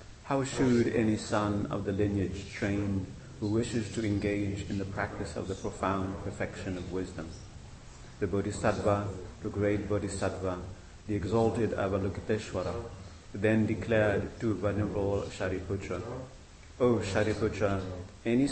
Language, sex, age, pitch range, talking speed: English, male, 30-49, 95-110 Hz, 120 wpm